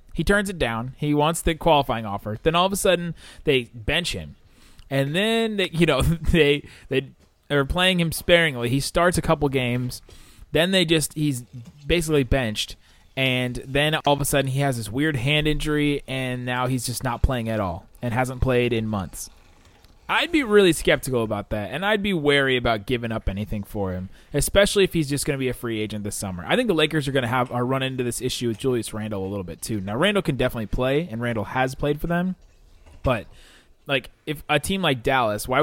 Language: English